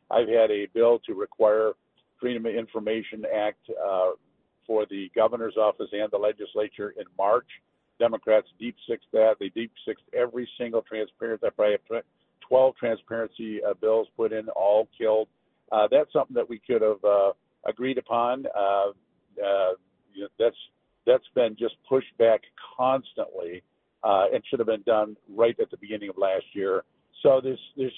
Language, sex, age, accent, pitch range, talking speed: English, male, 50-69, American, 110-140 Hz, 165 wpm